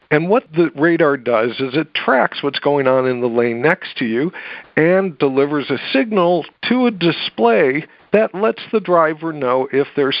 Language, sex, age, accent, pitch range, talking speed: English, male, 50-69, American, 130-190 Hz, 180 wpm